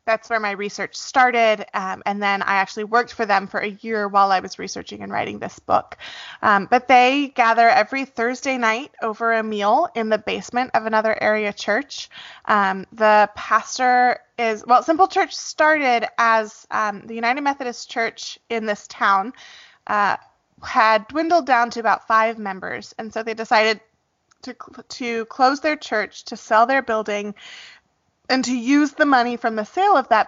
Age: 20-39